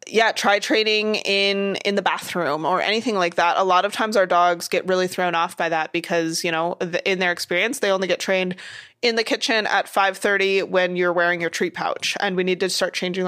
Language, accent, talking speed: English, American, 230 wpm